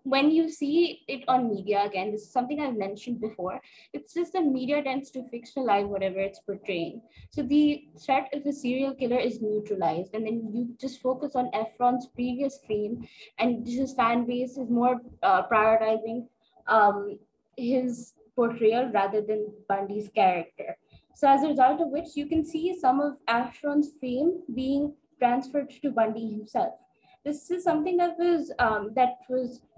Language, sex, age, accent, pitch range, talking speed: English, female, 20-39, Indian, 220-275 Hz, 165 wpm